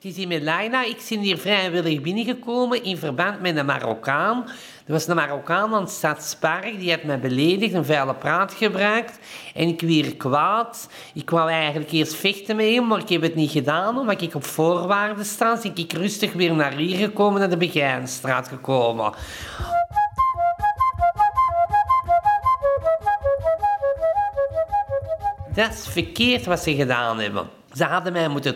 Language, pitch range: Dutch, 155-225 Hz